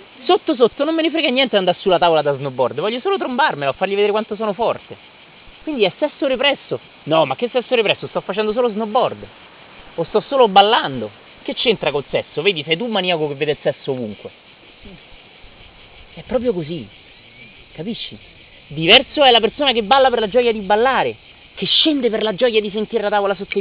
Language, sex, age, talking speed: Italian, male, 30-49, 195 wpm